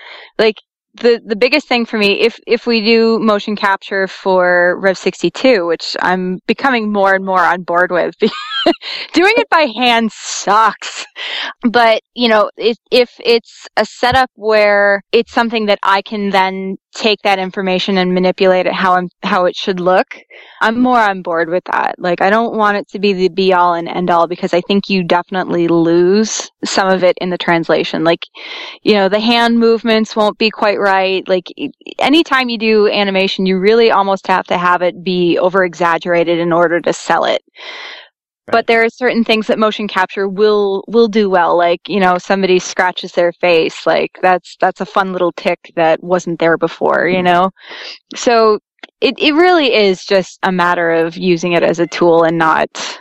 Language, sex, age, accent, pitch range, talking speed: English, female, 20-39, American, 180-230 Hz, 190 wpm